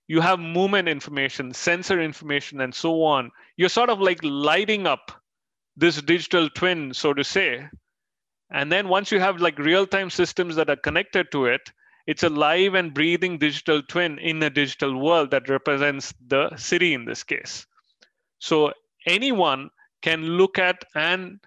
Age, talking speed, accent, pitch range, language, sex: 30-49, 165 wpm, Indian, 140-180 Hz, English, male